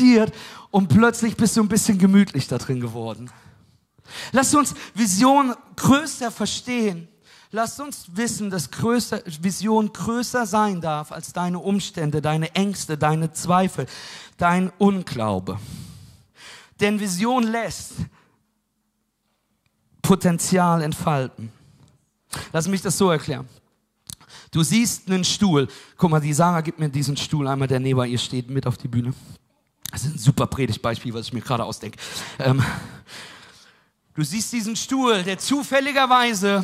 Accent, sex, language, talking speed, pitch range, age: German, male, German, 135 wpm, 145-220 Hz, 40-59